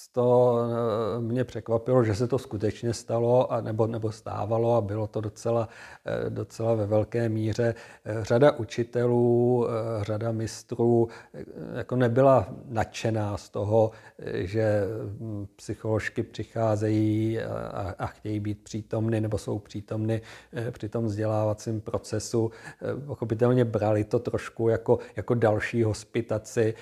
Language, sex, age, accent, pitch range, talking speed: Czech, male, 50-69, native, 110-115 Hz, 115 wpm